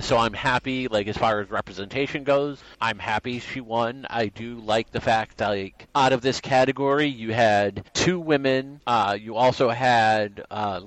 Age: 40-59